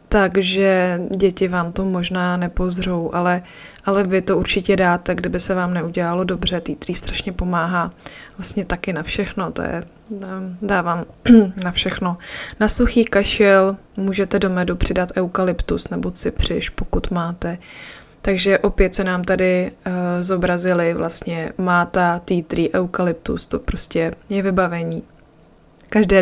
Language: Czech